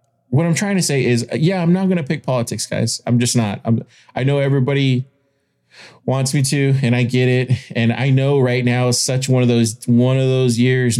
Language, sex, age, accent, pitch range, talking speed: English, male, 20-39, American, 115-140 Hz, 230 wpm